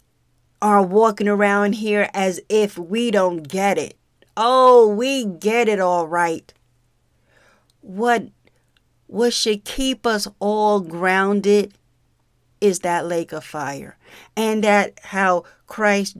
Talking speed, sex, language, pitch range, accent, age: 120 wpm, female, English, 180-210 Hz, American, 40-59